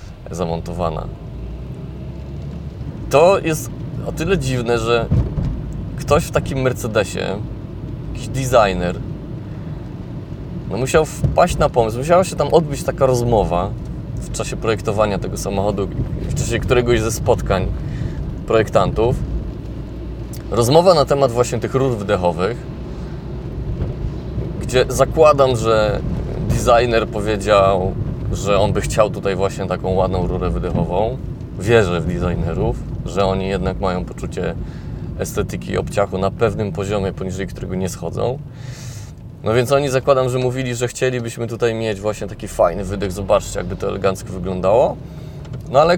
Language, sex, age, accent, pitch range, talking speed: Polish, male, 20-39, native, 95-135 Hz, 125 wpm